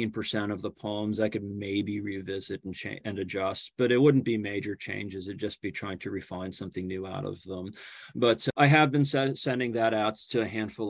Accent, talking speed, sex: American, 215 wpm, male